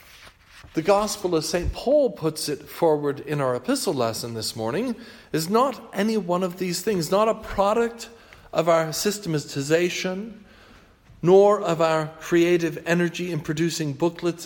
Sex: male